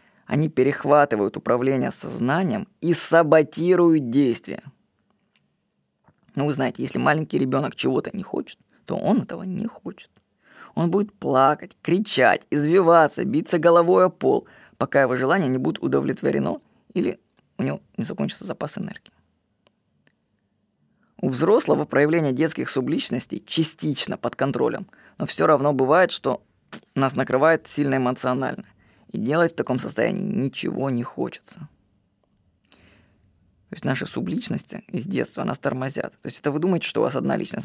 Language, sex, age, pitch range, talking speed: Russian, female, 20-39, 130-170 Hz, 135 wpm